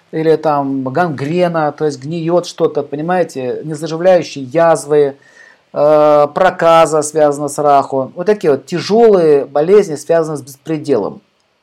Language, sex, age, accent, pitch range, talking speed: Russian, male, 50-69, native, 160-190 Hz, 115 wpm